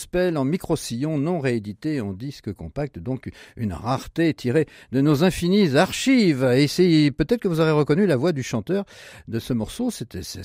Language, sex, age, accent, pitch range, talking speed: French, male, 50-69, French, 105-155 Hz, 180 wpm